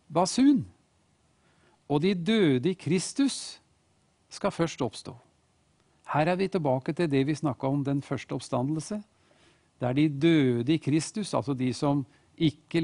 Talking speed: 145 wpm